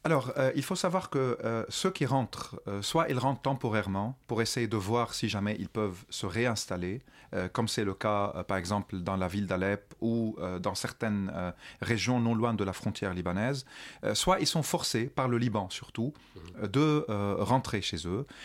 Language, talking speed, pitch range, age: French, 210 wpm, 100-130 Hz, 40-59